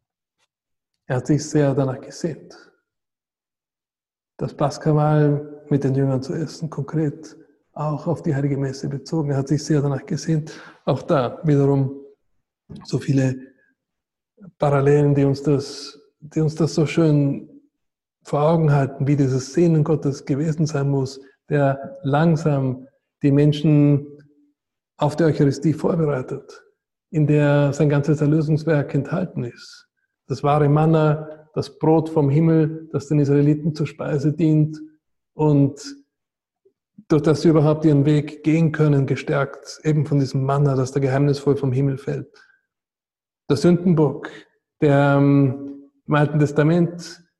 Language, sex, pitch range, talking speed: German, male, 140-155 Hz, 130 wpm